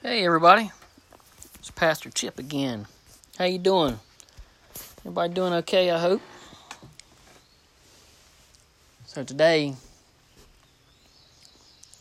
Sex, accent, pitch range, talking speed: male, American, 125-170 Hz, 85 wpm